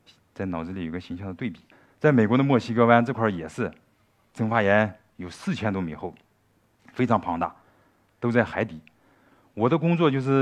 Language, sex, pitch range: Chinese, male, 100-130 Hz